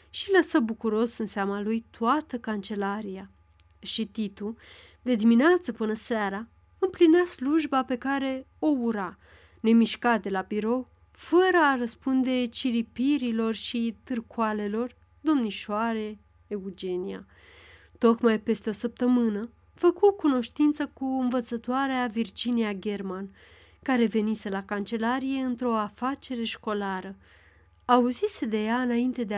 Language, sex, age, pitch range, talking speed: Romanian, female, 30-49, 210-255 Hz, 110 wpm